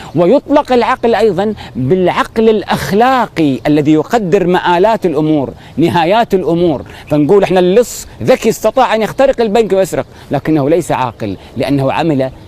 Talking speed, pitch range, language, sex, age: 120 wpm, 140-200 Hz, Arabic, male, 40-59